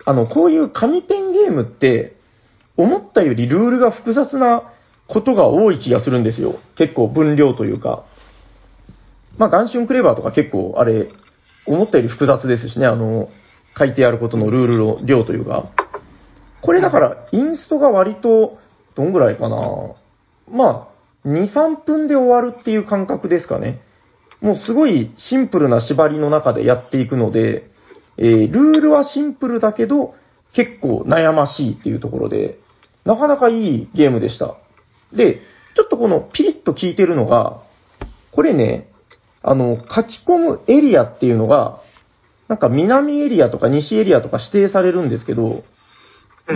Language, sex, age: Japanese, male, 40-59